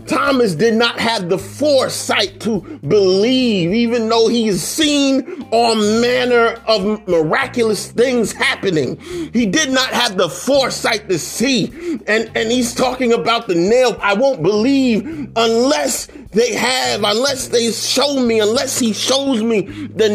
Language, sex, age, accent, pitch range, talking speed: English, male, 40-59, American, 215-270 Hz, 145 wpm